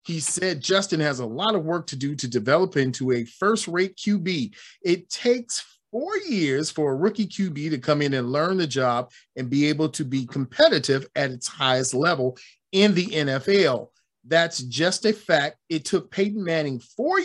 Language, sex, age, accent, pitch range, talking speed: English, male, 40-59, American, 130-185 Hz, 185 wpm